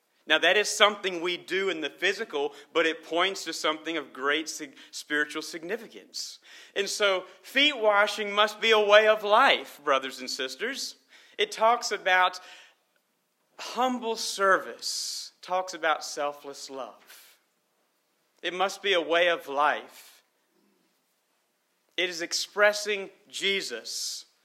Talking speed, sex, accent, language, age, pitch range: 130 wpm, male, American, English, 40-59, 145-195 Hz